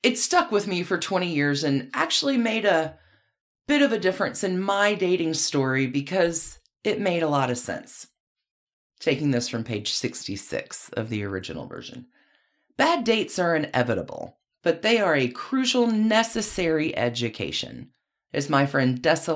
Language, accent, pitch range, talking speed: English, American, 135-195 Hz, 155 wpm